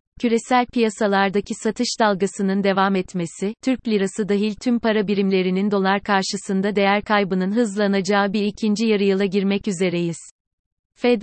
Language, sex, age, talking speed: Turkish, female, 30-49, 125 wpm